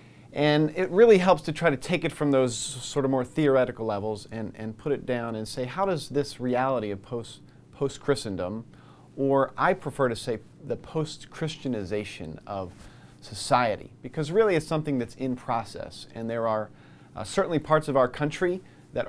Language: English